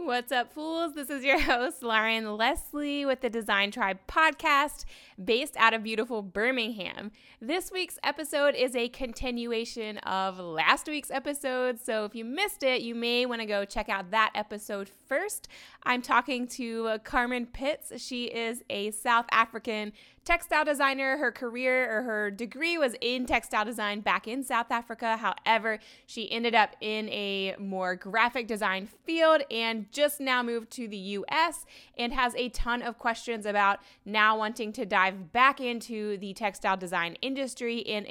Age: 20-39